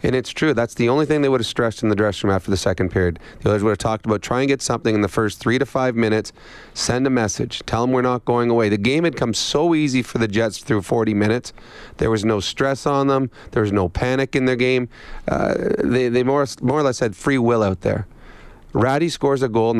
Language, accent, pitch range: English, American, 110-130 Hz